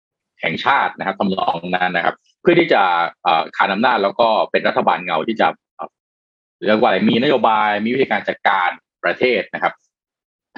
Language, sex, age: Thai, male, 20-39